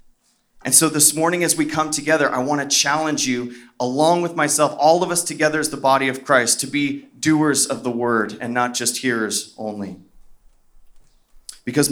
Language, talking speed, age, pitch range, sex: English, 180 wpm, 30-49, 120-150 Hz, male